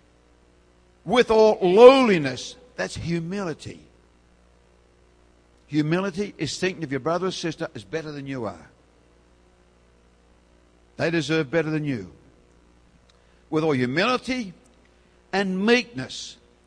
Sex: male